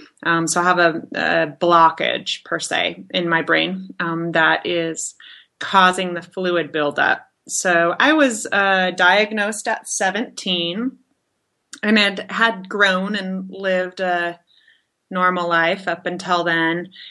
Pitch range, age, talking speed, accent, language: 170-210 Hz, 30-49, 135 wpm, American, English